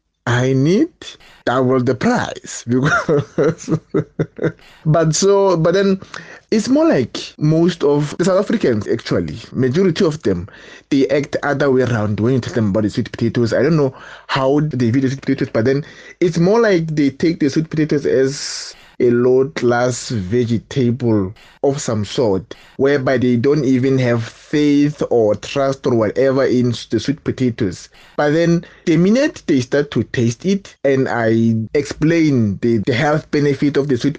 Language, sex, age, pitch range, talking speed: English, male, 20-39, 120-155 Hz, 165 wpm